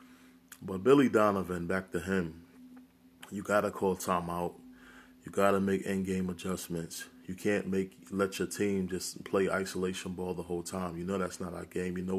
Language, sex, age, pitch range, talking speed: English, male, 20-39, 85-100 Hz, 180 wpm